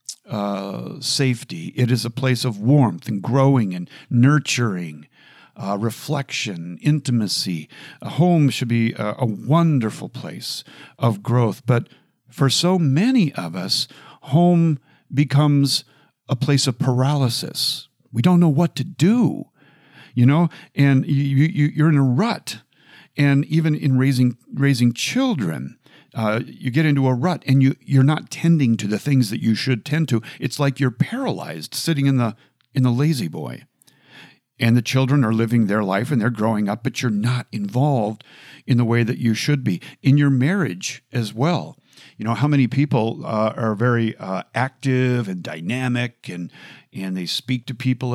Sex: male